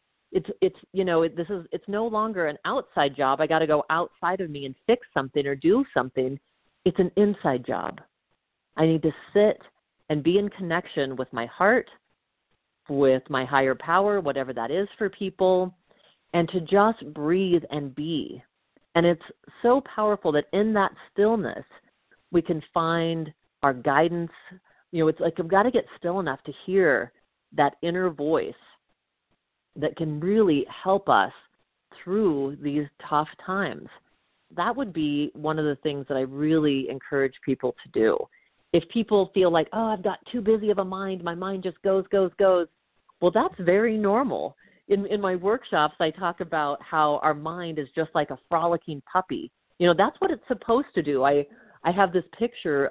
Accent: American